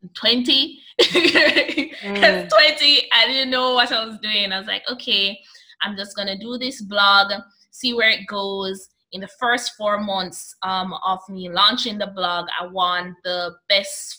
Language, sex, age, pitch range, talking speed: English, female, 20-39, 185-225 Hz, 165 wpm